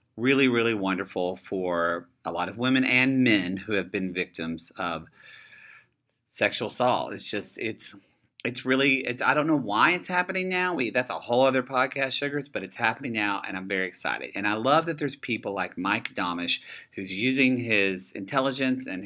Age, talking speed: 40-59, 185 wpm